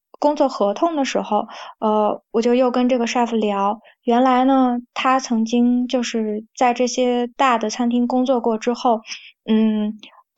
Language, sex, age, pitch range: Chinese, female, 20-39, 215-255 Hz